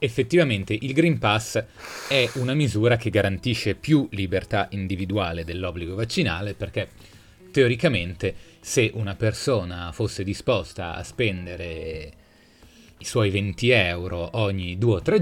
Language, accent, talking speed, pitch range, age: Italian, native, 120 wpm, 90-115 Hz, 30-49